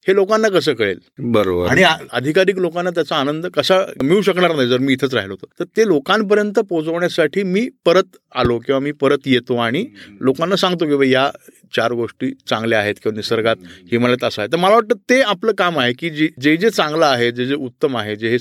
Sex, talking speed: male, 210 wpm